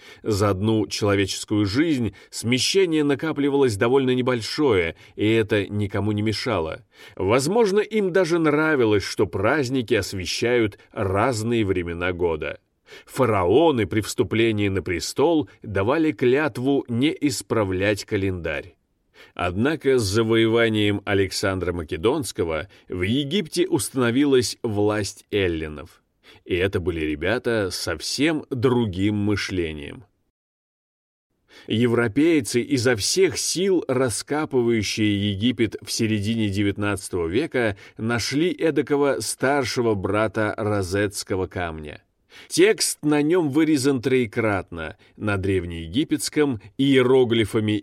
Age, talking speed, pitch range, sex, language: 30-49, 95 wpm, 100-135 Hz, male, Russian